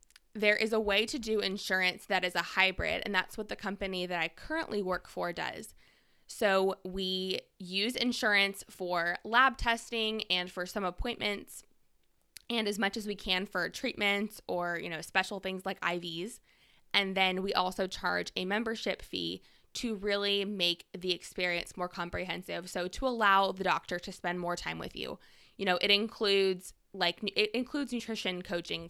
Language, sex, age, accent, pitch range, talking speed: English, female, 20-39, American, 175-210 Hz, 170 wpm